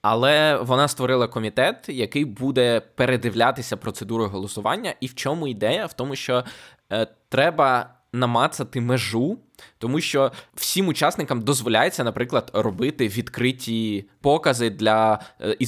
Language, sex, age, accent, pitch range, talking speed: Ukrainian, male, 20-39, native, 115-140 Hz, 115 wpm